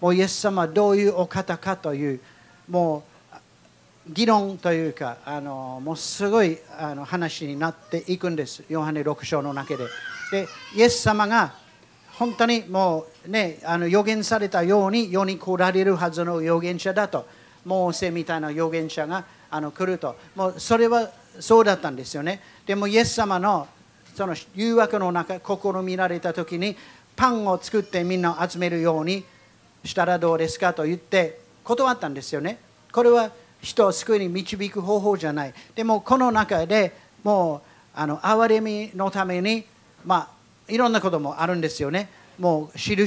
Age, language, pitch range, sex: 40-59, Japanese, 165-210 Hz, male